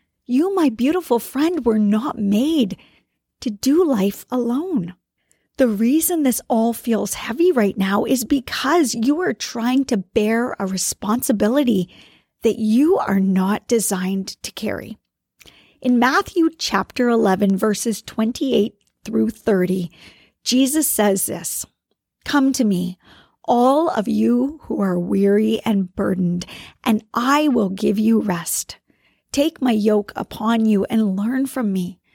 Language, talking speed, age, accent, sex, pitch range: English, 135 wpm, 40-59, American, female, 200-255 Hz